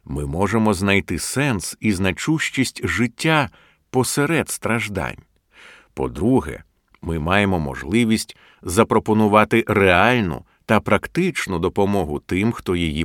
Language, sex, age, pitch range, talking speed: Ukrainian, male, 50-69, 90-125 Hz, 95 wpm